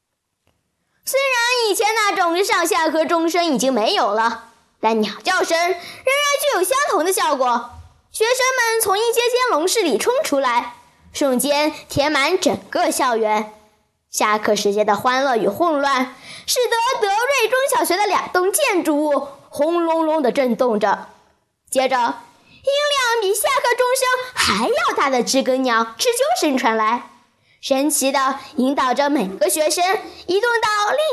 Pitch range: 250-390 Hz